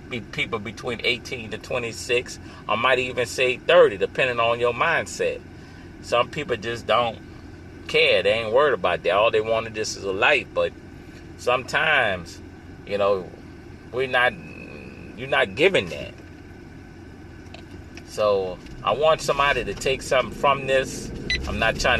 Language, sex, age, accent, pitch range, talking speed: English, male, 30-49, American, 95-140 Hz, 145 wpm